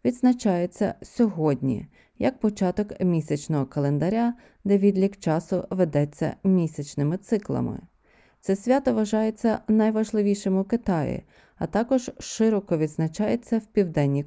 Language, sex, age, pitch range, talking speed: Ukrainian, female, 30-49, 160-230 Hz, 100 wpm